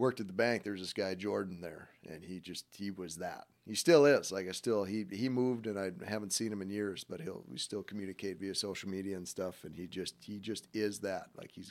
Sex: male